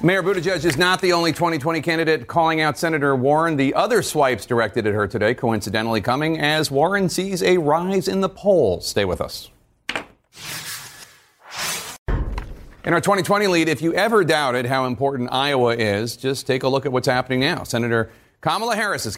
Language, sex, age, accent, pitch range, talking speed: English, male, 40-59, American, 110-150 Hz, 170 wpm